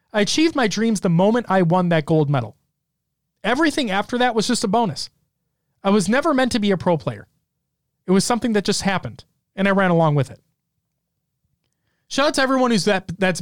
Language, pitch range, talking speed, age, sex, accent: English, 150-205 Hz, 205 wpm, 30-49, male, American